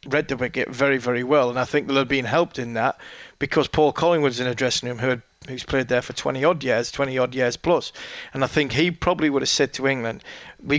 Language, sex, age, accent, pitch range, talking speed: English, male, 30-49, British, 130-150 Hz, 255 wpm